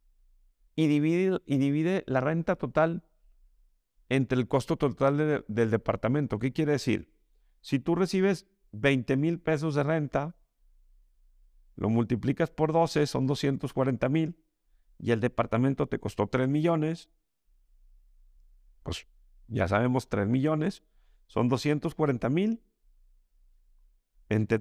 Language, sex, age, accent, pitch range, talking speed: Spanish, male, 50-69, Mexican, 110-155 Hz, 115 wpm